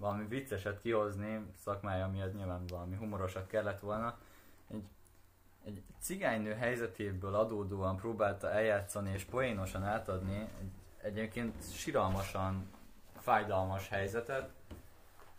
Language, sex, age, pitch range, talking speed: Hungarian, male, 20-39, 95-115 Hz, 100 wpm